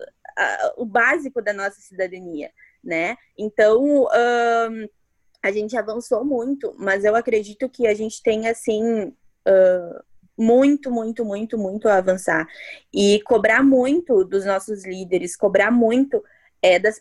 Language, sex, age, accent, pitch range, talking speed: Portuguese, female, 20-39, Brazilian, 210-265 Hz, 130 wpm